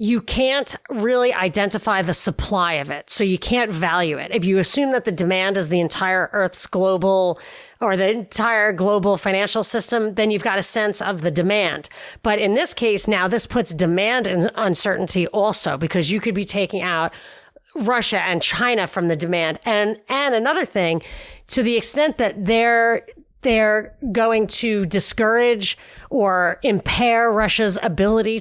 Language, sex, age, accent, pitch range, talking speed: English, female, 40-59, American, 180-230 Hz, 165 wpm